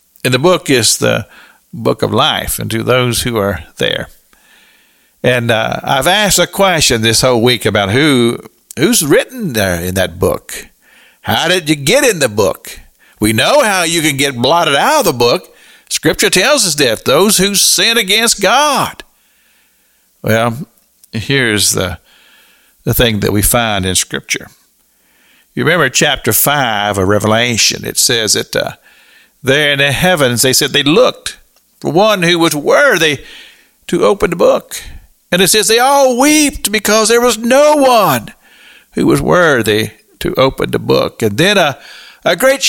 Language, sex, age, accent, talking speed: English, male, 50-69, American, 165 wpm